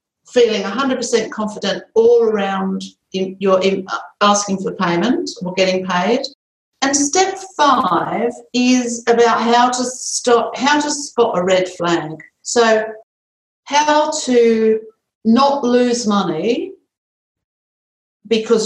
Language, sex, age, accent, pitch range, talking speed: English, female, 50-69, British, 190-250 Hz, 115 wpm